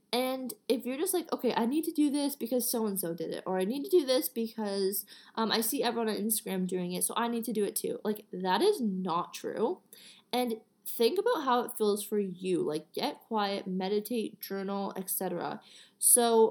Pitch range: 200-250 Hz